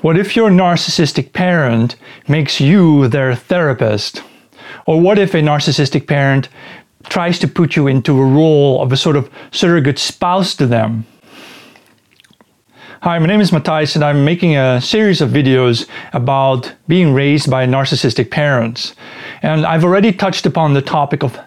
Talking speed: 160 wpm